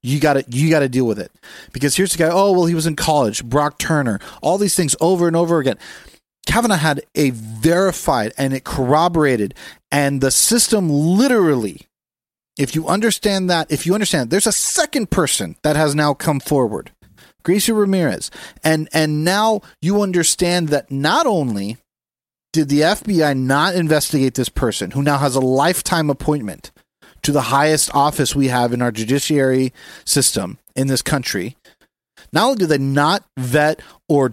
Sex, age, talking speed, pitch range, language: male, 30-49, 170 wpm, 140-185 Hz, English